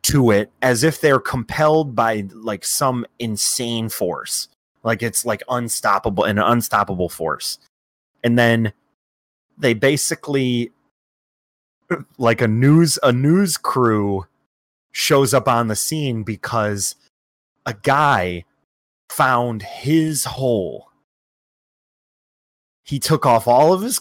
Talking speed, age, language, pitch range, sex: 110 wpm, 30-49, English, 100-135 Hz, male